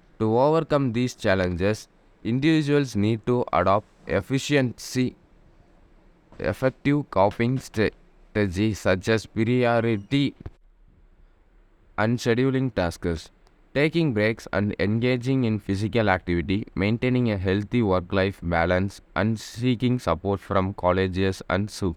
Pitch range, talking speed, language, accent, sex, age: 95-120 Hz, 100 wpm, English, Indian, male, 20-39